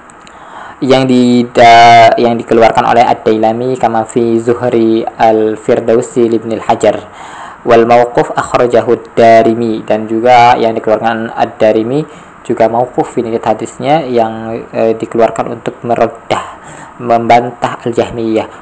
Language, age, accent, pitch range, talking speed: Indonesian, 20-39, native, 115-135 Hz, 95 wpm